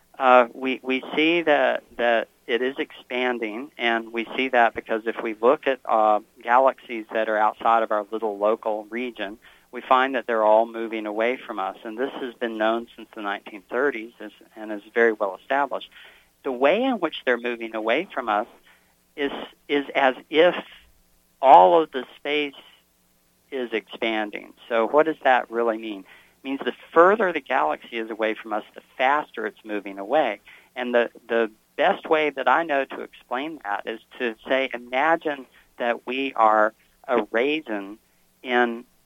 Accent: American